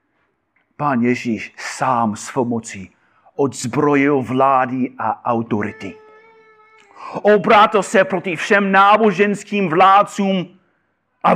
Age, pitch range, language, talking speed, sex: 40-59, 165-205 Hz, Czech, 85 wpm, male